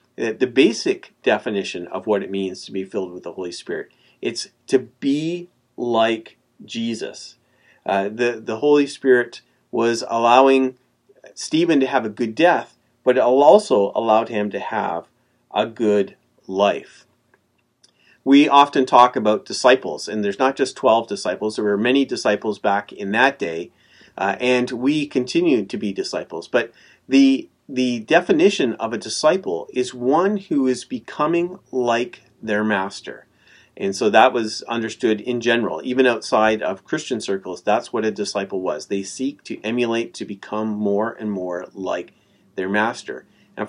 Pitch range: 105-135 Hz